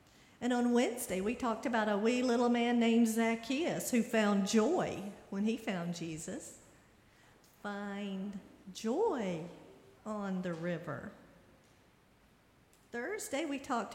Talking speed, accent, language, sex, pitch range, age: 115 wpm, American, English, female, 200-240 Hz, 50-69